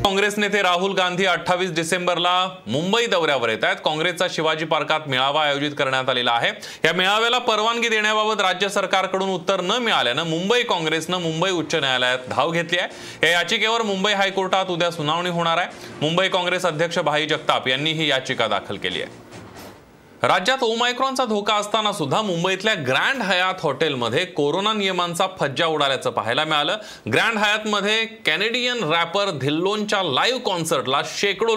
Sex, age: male, 30-49